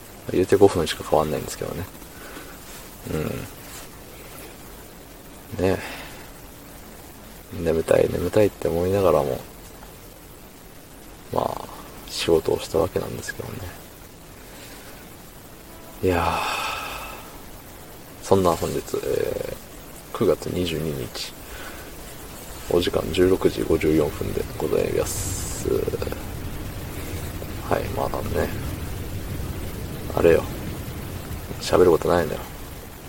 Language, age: Japanese, 40-59